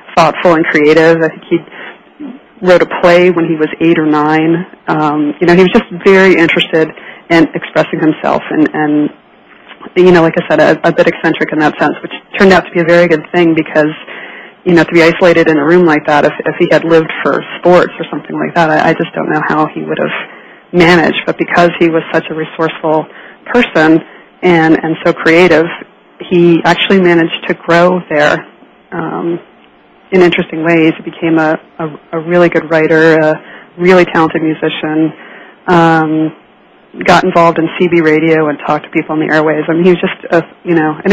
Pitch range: 160-175 Hz